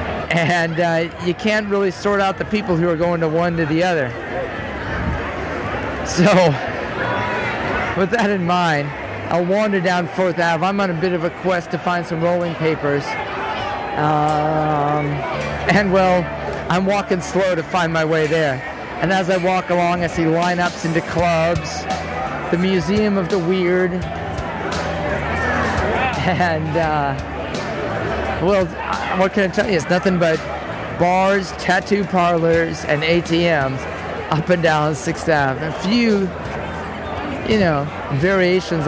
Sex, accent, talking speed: male, American, 140 wpm